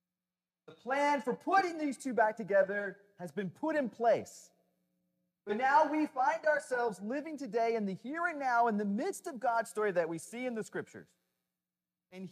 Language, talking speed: English, 185 wpm